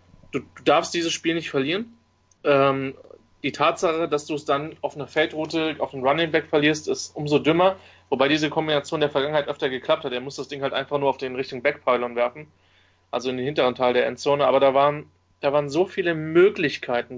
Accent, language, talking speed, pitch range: German, English, 210 wpm, 135-160 Hz